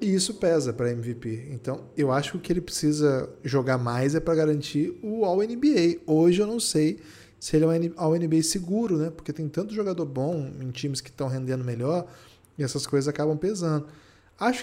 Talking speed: 190 wpm